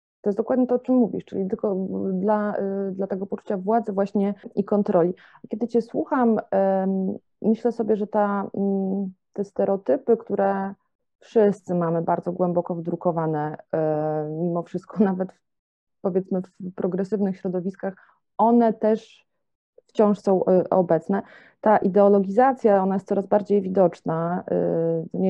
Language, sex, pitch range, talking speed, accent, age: English, female, 170-205 Hz, 120 wpm, Polish, 30-49